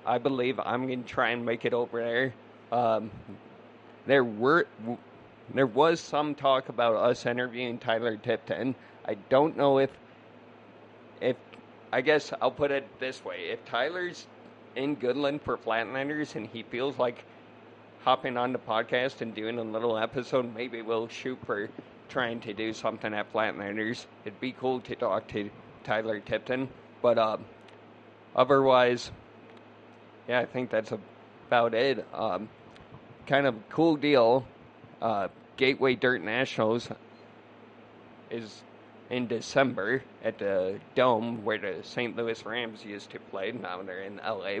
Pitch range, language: 115-130 Hz, English